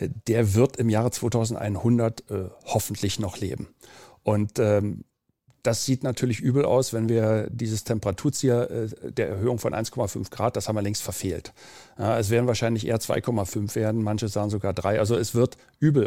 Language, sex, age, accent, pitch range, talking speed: German, male, 40-59, German, 110-130 Hz, 165 wpm